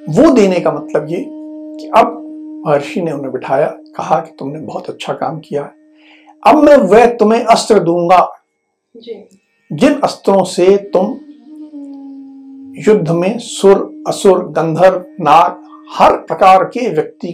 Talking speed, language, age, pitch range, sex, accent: 135 wpm, Hindi, 60-79, 175-290 Hz, male, native